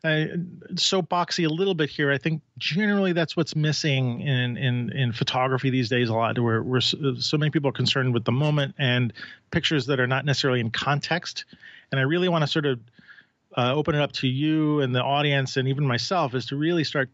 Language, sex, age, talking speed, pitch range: English, male, 40-59, 215 wpm, 130-155 Hz